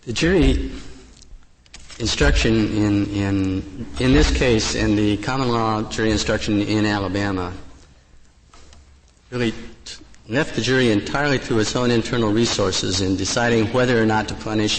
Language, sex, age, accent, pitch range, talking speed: English, male, 50-69, American, 100-120 Hz, 140 wpm